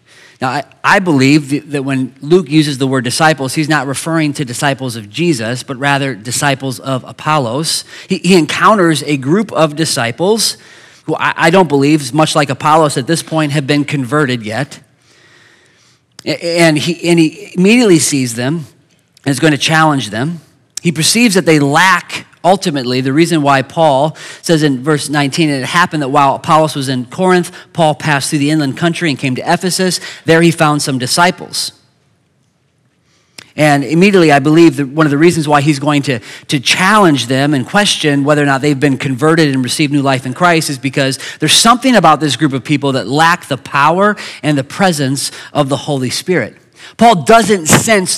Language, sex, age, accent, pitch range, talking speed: English, male, 30-49, American, 140-180 Hz, 180 wpm